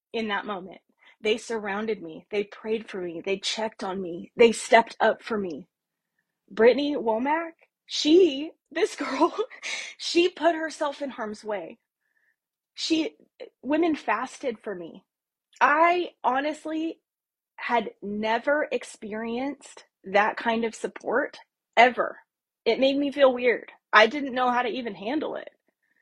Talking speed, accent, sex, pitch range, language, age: 135 wpm, American, female, 215-295 Hz, English, 20-39